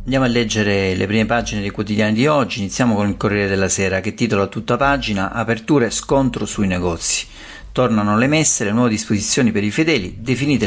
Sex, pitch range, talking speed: male, 100-130 Hz, 200 wpm